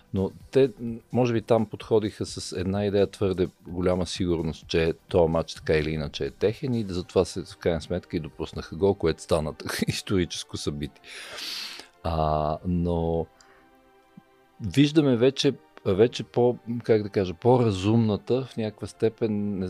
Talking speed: 140 wpm